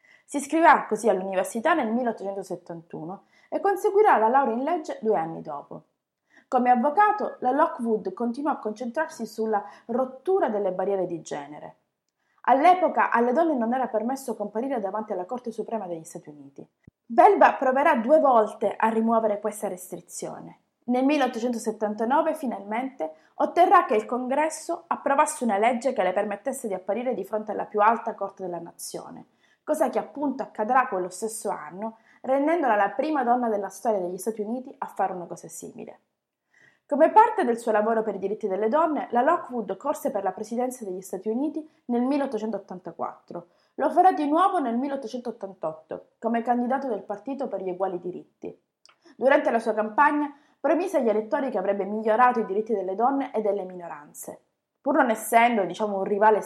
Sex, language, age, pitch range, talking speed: female, Italian, 30-49, 200-275 Hz, 160 wpm